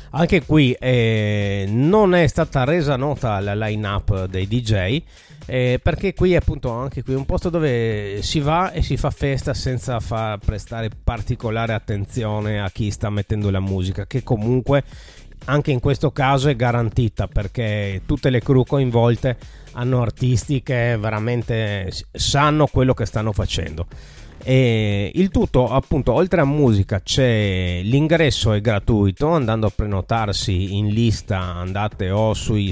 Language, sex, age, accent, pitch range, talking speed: Italian, male, 30-49, native, 105-140 Hz, 150 wpm